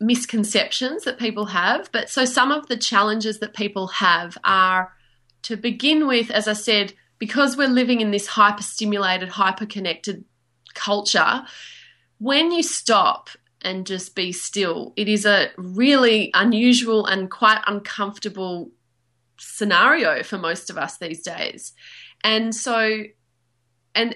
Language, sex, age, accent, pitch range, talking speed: English, female, 20-39, Australian, 190-230 Hz, 135 wpm